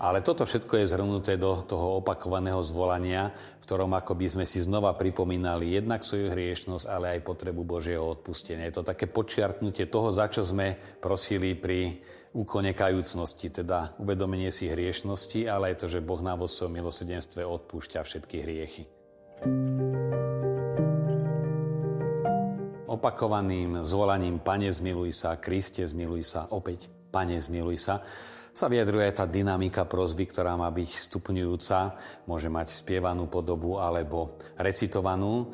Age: 40-59